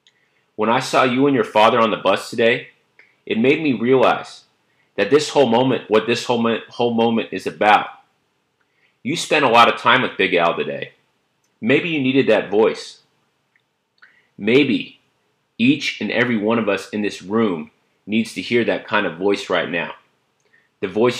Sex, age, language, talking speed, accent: male, 30-49, English, 175 wpm, American